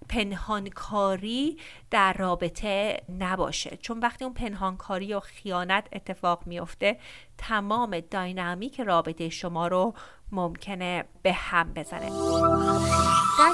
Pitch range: 185-245 Hz